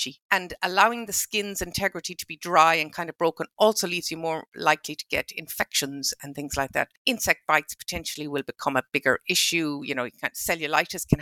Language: English